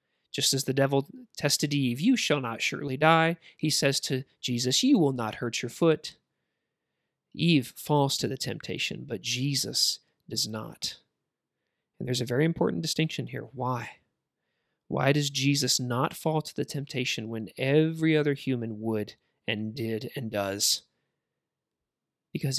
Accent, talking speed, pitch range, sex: American, 150 wpm, 125-165 Hz, male